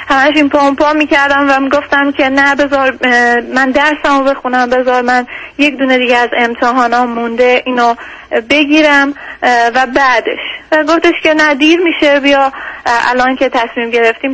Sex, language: female, Persian